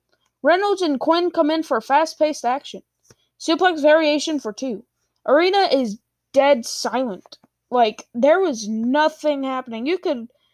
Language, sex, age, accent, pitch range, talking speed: English, female, 10-29, American, 240-320 Hz, 130 wpm